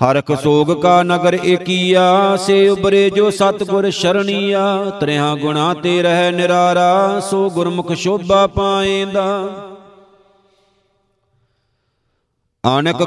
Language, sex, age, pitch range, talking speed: Punjabi, male, 50-69, 175-195 Hz, 85 wpm